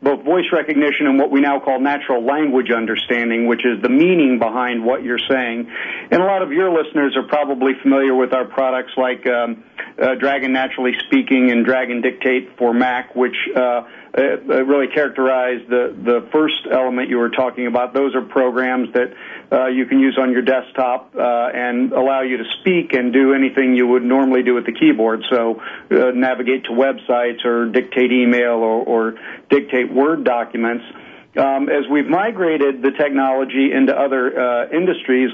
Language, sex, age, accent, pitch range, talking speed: English, male, 50-69, American, 125-140 Hz, 180 wpm